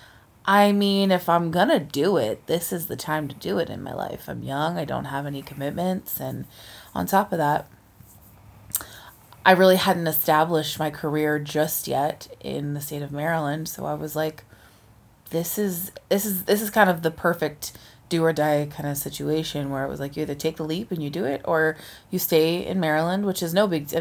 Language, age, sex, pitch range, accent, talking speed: English, 20-39, female, 140-170 Hz, American, 210 wpm